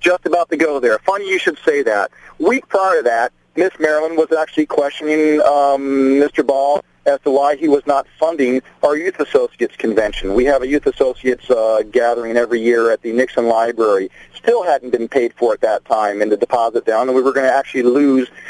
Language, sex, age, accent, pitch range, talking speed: English, male, 40-59, American, 125-170 Hz, 210 wpm